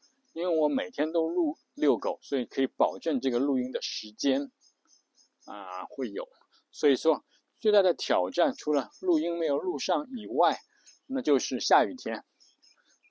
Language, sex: Chinese, male